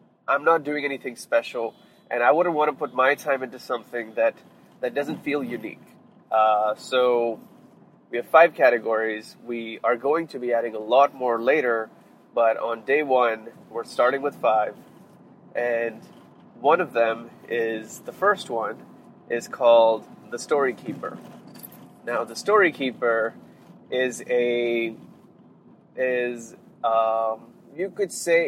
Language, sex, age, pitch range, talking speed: English, male, 20-39, 115-165 Hz, 145 wpm